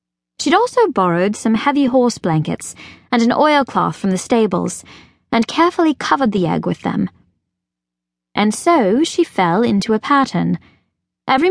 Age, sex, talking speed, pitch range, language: 20-39, female, 145 wpm, 165-255 Hz, English